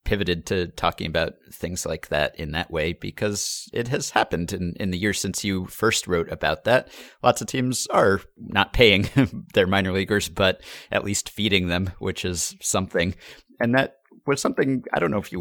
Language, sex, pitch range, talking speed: English, male, 85-105 Hz, 195 wpm